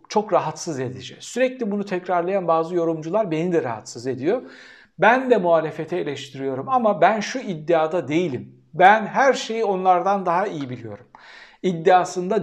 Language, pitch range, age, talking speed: Turkish, 165-215 Hz, 60-79, 140 wpm